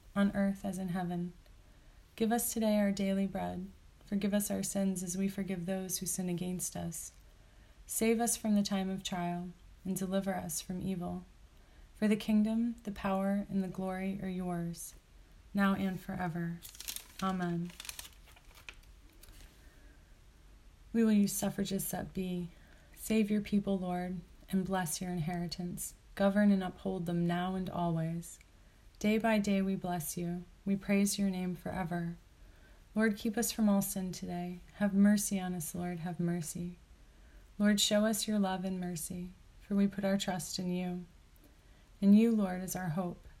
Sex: female